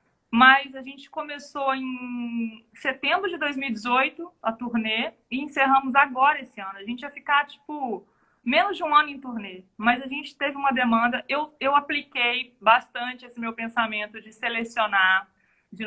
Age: 20-39